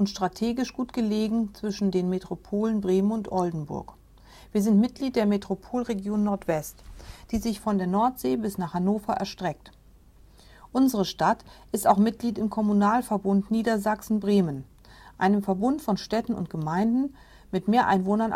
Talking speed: 140 wpm